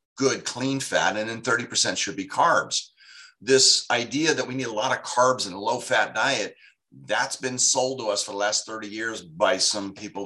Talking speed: 205 wpm